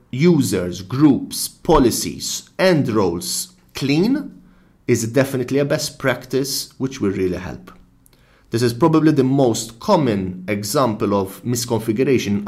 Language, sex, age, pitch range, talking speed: English, male, 30-49, 105-145 Hz, 115 wpm